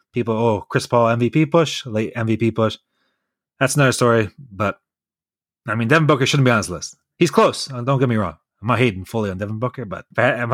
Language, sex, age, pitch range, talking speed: English, male, 30-49, 110-135 Hz, 210 wpm